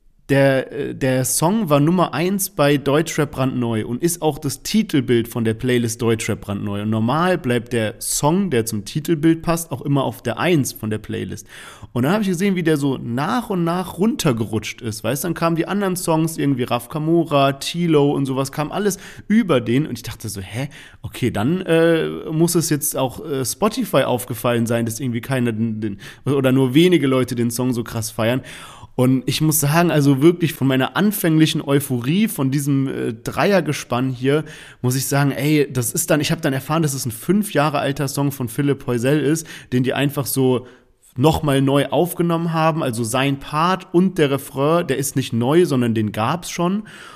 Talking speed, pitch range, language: 195 wpm, 125-160 Hz, German